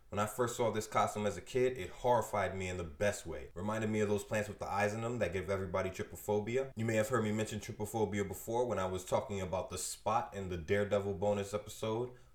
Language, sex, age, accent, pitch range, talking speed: English, male, 20-39, American, 100-120 Hz, 245 wpm